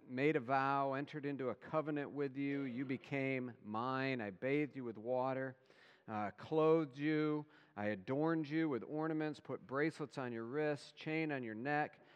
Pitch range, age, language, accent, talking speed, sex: 120-150 Hz, 50-69, English, American, 170 wpm, male